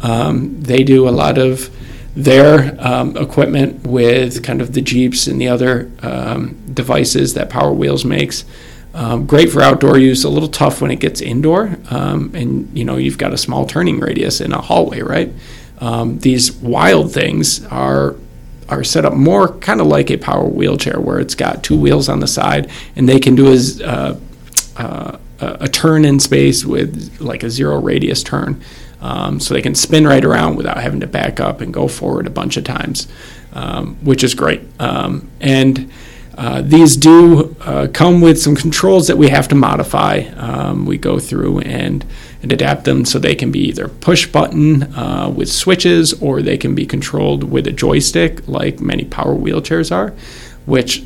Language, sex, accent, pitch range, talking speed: English, male, American, 115-145 Hz, 185 wpm